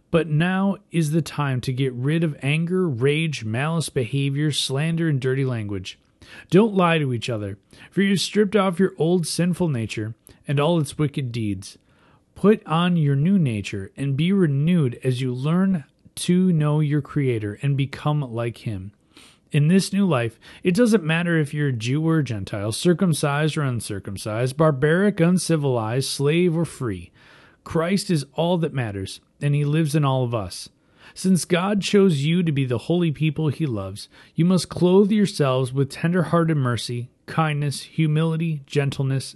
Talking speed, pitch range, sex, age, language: 170 wpm, 125-170 Hz, male, 30-49, English